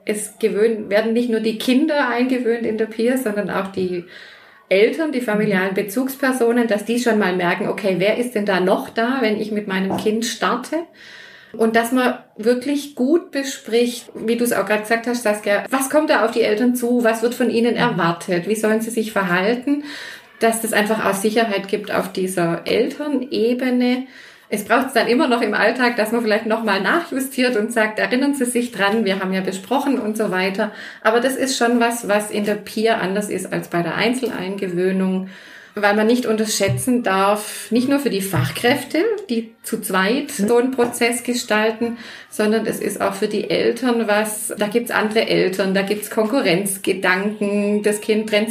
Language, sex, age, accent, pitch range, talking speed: German, female, 30-49, German, 210-245 Hz, 190 wpm